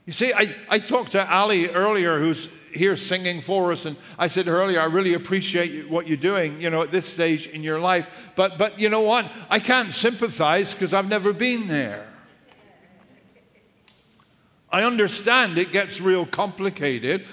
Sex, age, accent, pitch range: male, 60-79, American, 165-215 Hz